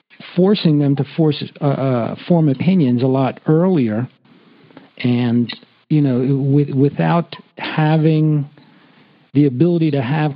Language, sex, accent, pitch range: English, male, American, 125-160 Hz